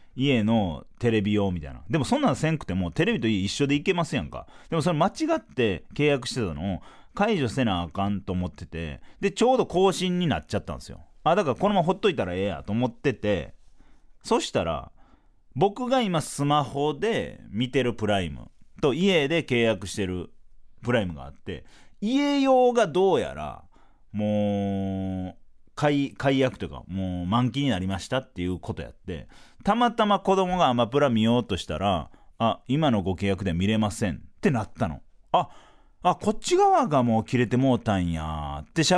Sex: male